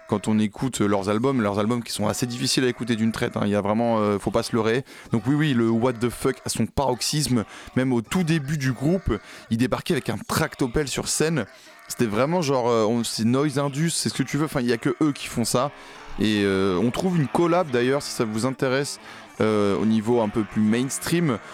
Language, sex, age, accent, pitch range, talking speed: French, male, 20-39, French, 105-135 Hz, 245 wpm